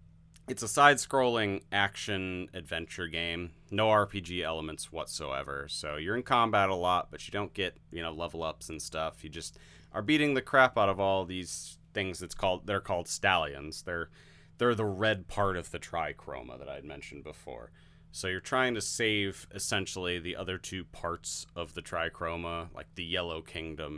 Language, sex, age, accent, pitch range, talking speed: English, male, 30-49, American, 80-105 Hz, 180 wpm